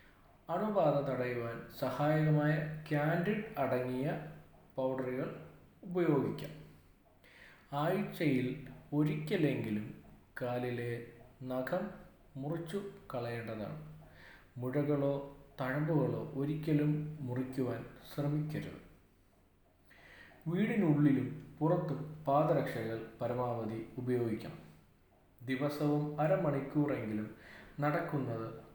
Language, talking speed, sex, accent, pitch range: Malayalam, 55 wpm, male, native, 115-150 Hz